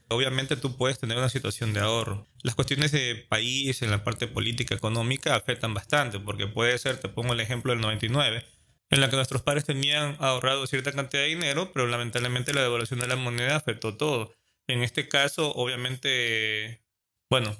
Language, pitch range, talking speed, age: Spanish, 115-135 Hz, 180 wpm, 20-39